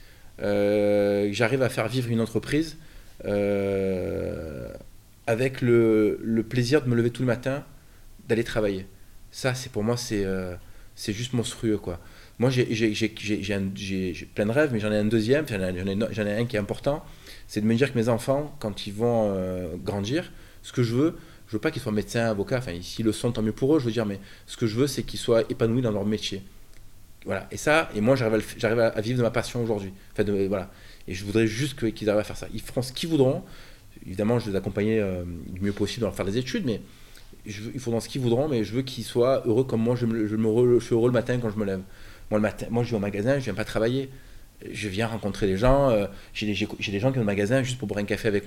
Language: French